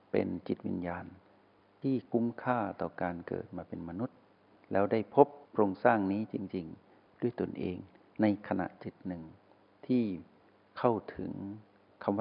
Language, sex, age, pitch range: Thai, male, 60-79, 95-110 Hz